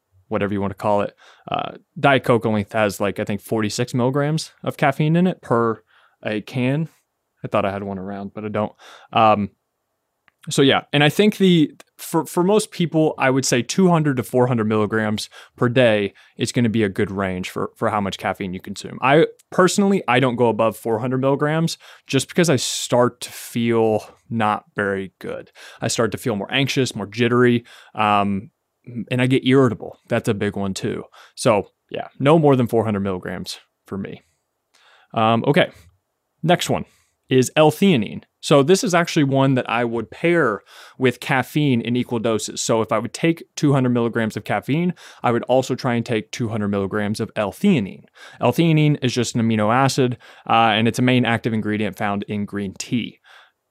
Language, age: English, 20-39